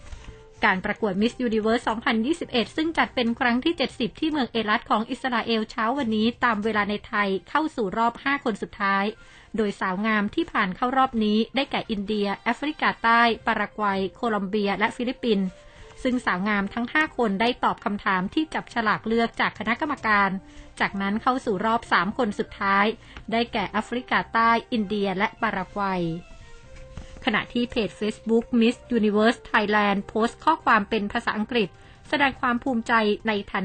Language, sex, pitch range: Thai, female, 205-235 Hz